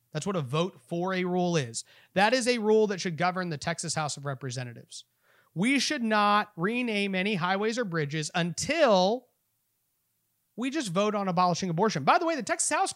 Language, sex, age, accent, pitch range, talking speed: English, male, 30-49, American, 140-215 Hz, 190 wpm